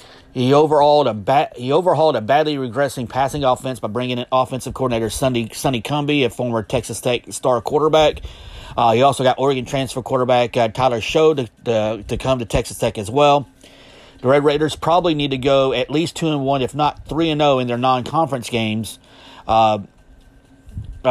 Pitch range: 115-145 Hz